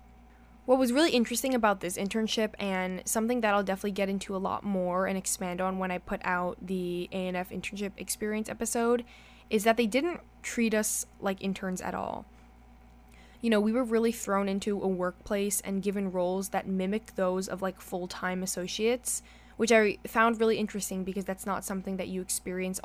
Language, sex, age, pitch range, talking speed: English, female, 10-29, 185-220 Hz, 185 wpm